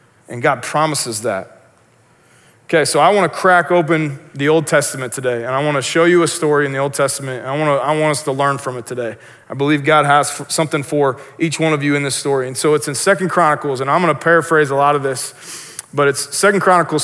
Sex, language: male, English